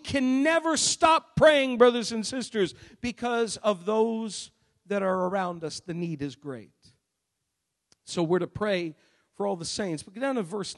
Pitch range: 185-240 Hz